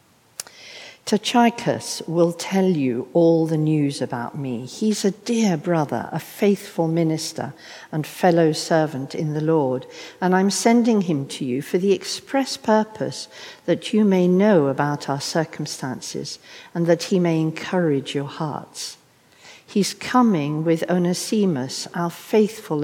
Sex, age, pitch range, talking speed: female, 60-79, 145-200 Hz, 135 wpm